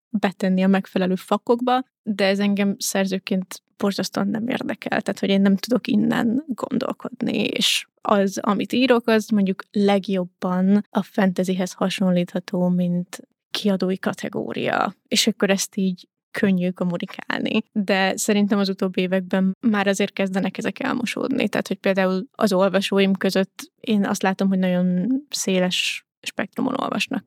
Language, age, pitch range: Hungarian, 20-39, 195-240 Hz